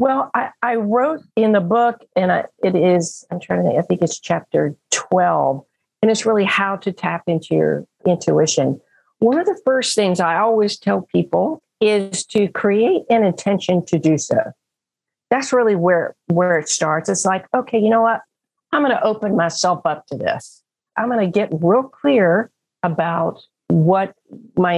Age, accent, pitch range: 50-69, American, 170-220 Hz